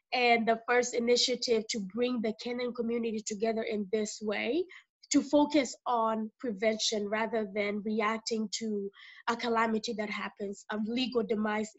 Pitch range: 215-250 Hz